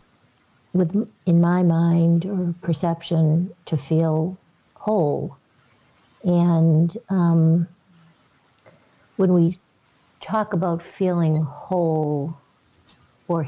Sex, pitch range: female, 155-180 Hz